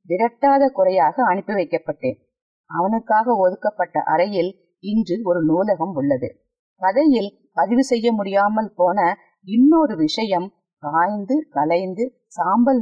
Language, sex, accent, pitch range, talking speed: Tamil, female, native, 180-255 Hz, 65 wpm